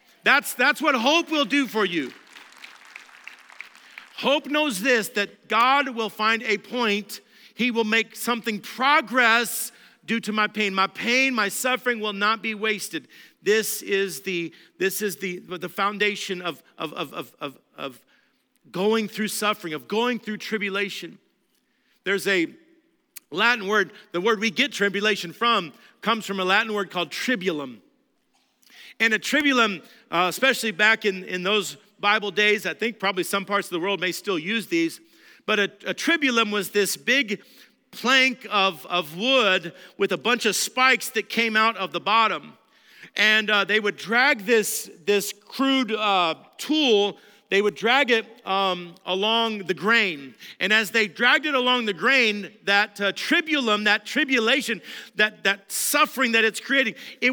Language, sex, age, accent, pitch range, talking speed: English, male, 50-69, American, 200-245 Hz, 160 wpm